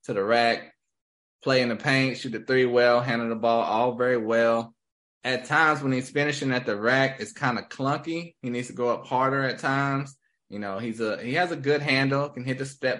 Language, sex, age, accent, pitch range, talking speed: English, male, 20-39, American, 105-130 Hz, 230 wpm